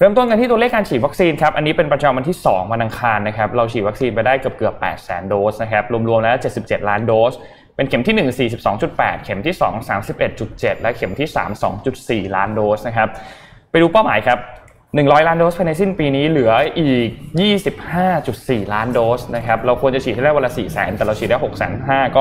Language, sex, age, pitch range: Thai, male, 20-39, 110-145 Hz